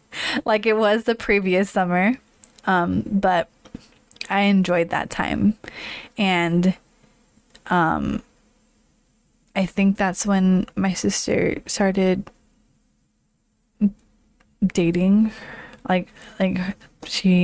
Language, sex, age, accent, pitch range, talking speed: English, female, 20-39, American, 175-215 Hz, 85 wpm